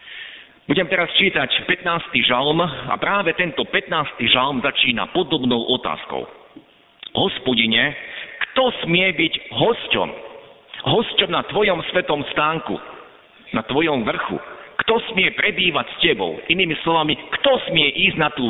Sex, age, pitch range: male, 50-69, 130-185 Hz